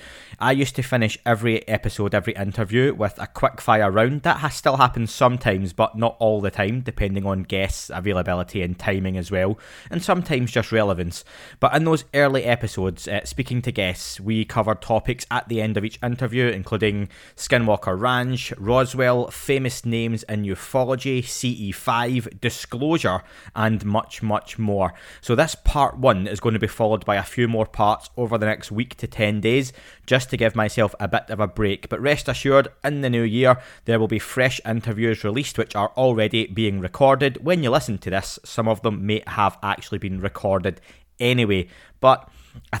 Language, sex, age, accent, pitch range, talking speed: English, male, 20-39, British, 100-120 Hz, 185 wpm